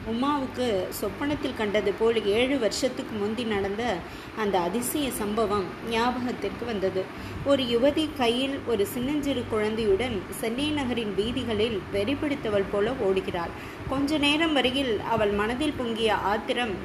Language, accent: Tamil, native